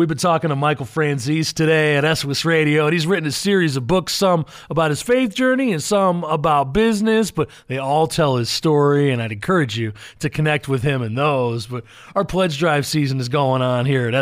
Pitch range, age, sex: 135-180 Hz, 30-49, male